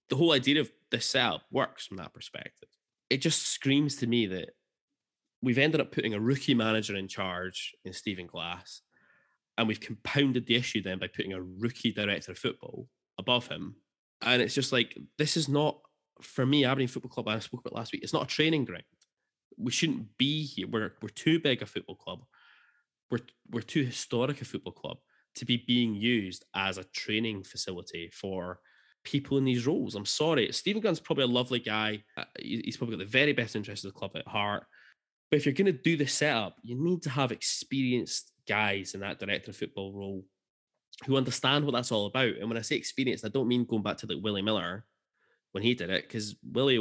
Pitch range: 100-135 Hz